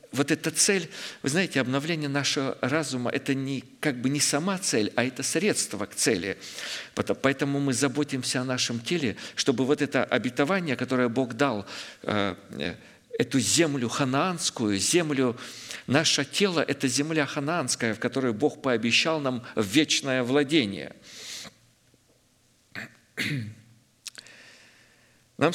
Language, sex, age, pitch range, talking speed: Russian, male, 50-69, 115-150 Hz, 115 wpm